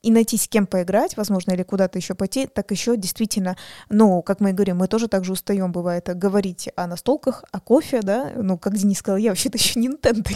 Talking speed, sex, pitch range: 225 wpm, female, 185-215 Hz